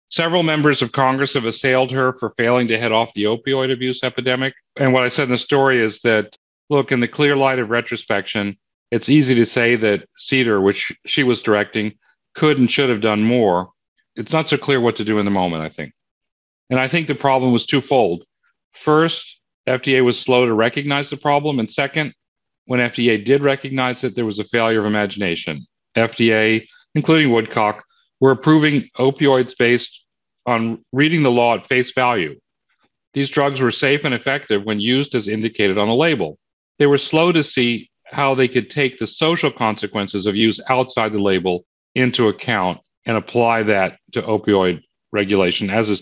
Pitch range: 115-140 Hz